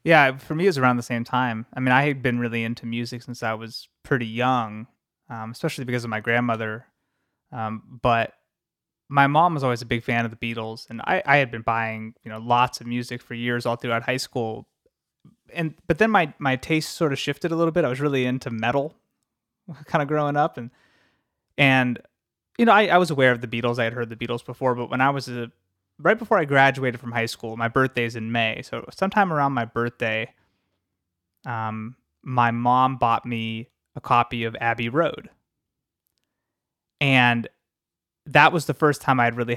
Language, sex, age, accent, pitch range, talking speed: English, male, 20-39, American, 115-135 Hz, 205 wpm